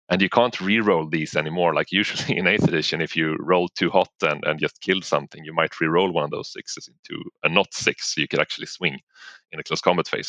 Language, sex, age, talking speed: English, male, 30-49, 245 wpm